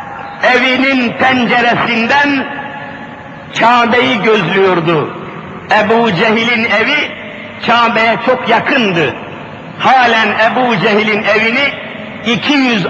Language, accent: Turkish, native